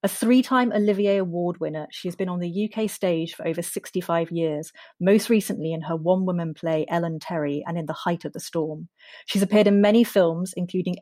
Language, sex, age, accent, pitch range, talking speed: English, female, 30-49, British, 165-195 Hz, 200 wpm